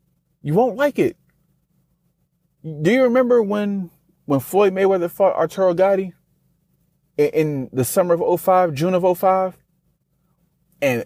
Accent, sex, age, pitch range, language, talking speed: American, male, 30-49, 150-180 Hz, English, 130 wpm